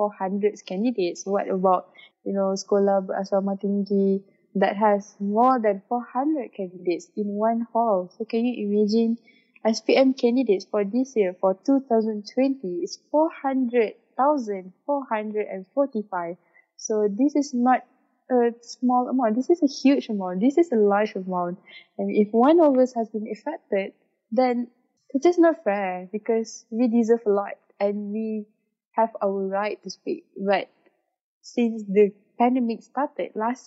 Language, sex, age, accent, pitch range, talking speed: English, female, 20-39, Malaysian, 205-265 Hz, 140 wpm